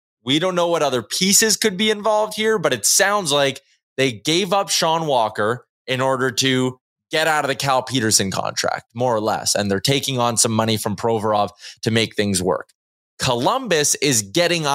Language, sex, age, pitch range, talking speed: English, male, 20-39, 115-180 Hz, 190 wpm